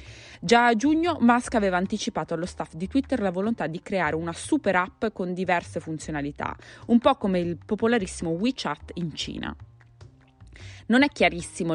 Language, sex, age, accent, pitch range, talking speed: Italian, female, 20-39, native, 150-220 Hz, 160 wpm